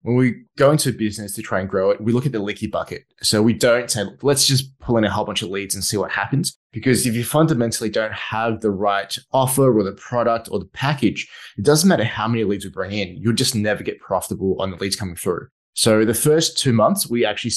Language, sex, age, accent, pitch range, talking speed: English, male, 20-39, Australian, 105-125 Hz, 255 wpm